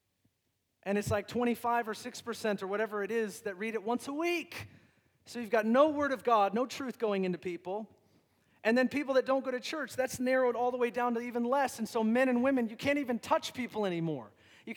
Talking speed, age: 230 wpm, 40-59